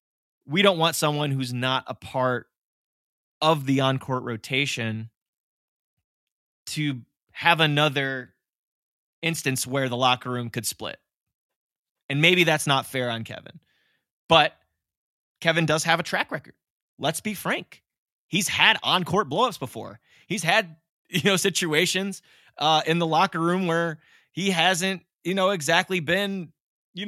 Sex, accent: male, American